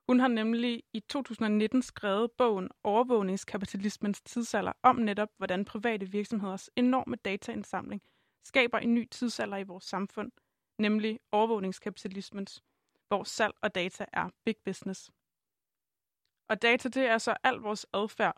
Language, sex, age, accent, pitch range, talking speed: Danish, female, 20-39, native, 205-235 Hz, 135 wpm